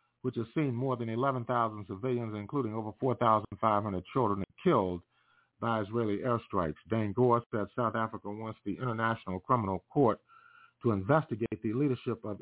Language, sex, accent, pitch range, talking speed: English, male, American, 105-130 Hz, 145 wpm